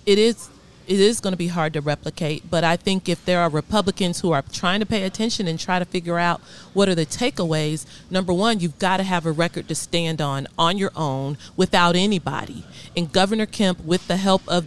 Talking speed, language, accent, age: 225 wpm, English, American, 40-59